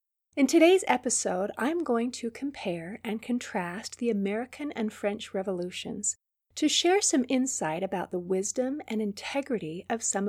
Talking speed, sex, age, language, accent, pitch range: 145 wpm, female, 40-59, English, American, 185-260 Hz